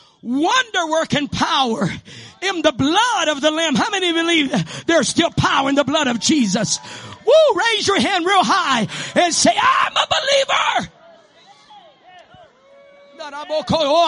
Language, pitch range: English, 275-360 Hz